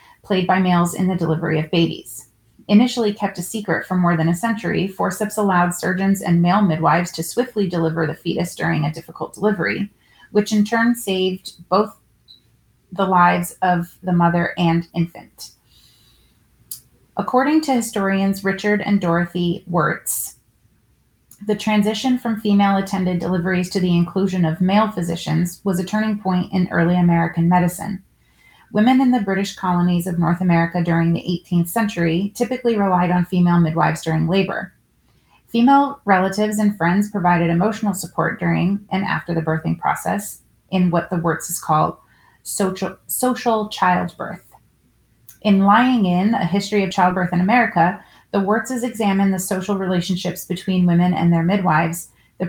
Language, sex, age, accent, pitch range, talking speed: English, female, 30-49, American, 170-205 Hz, 150 wpm